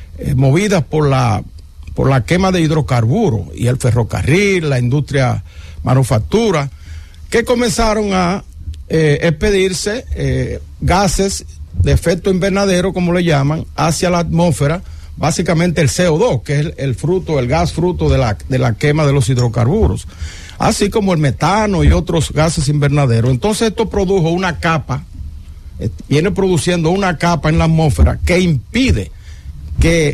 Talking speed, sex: 145 wpm, male